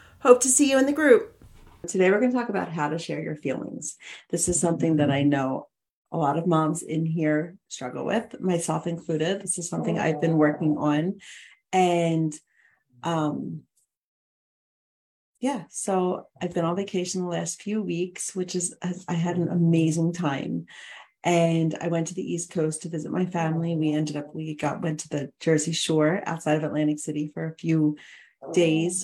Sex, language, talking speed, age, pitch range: female, English, 185 wpm, 40-59, 155-185 Hz